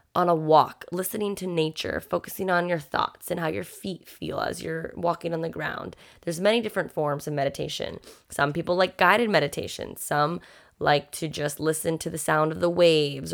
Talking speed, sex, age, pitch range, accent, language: 195 wpm, female, 20-39, 150-175 Hz, American, English